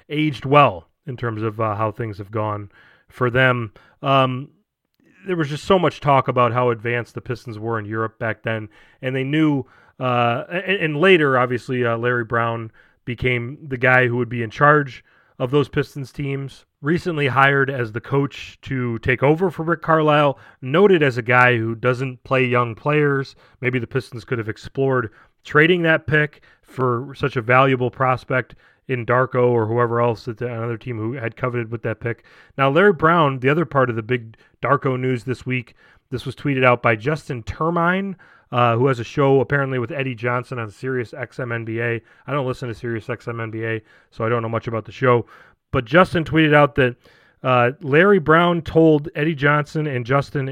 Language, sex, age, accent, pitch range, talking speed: English, male, 30-49, American, 120-150 Hz, 190 wpm